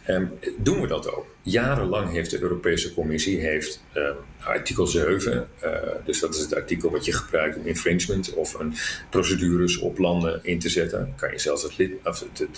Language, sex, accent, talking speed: Dutch, male, Dutch, 165 wpm